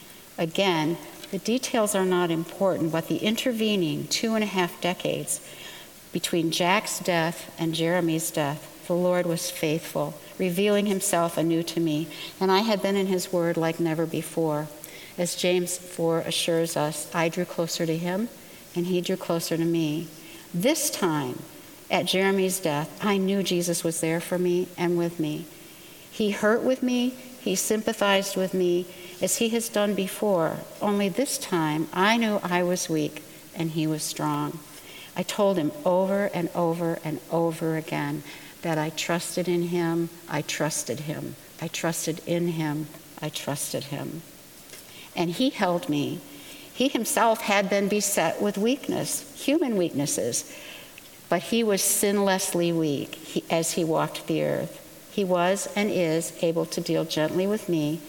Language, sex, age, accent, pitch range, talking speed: English, female, 60-79, American, 165-195 Hz, 155 wpm